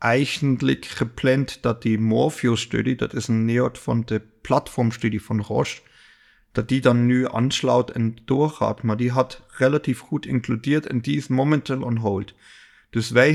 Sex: male